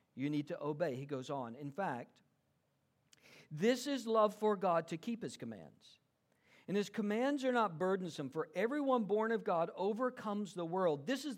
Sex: male